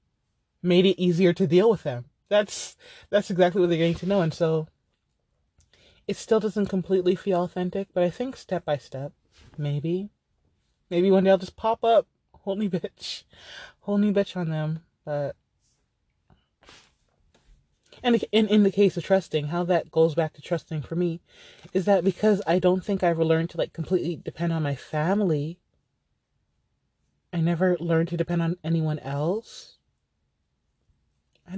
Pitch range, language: 165-215 Hz, English